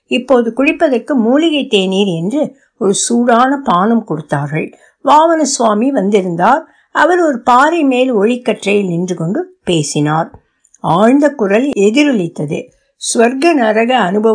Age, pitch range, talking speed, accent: 60-79, 185-265 Hz, 40 wpm, native